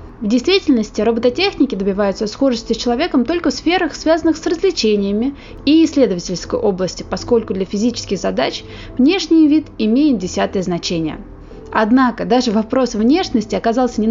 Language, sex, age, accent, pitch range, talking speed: Russian, female, 20-39, native, 200-270 Hz, 130 wpm